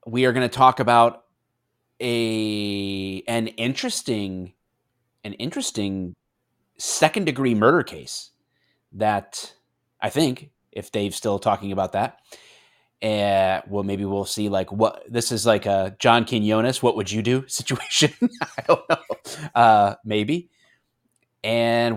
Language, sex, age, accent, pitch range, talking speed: English, male, 30-49, American, 100-125 Hz, 130 wpm